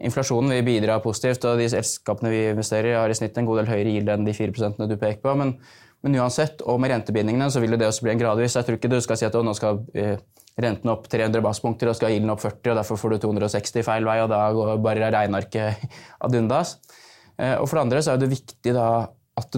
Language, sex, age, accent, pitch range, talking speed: English, male, 20-39, Norwegian, 115-145 Hz, 245 wpm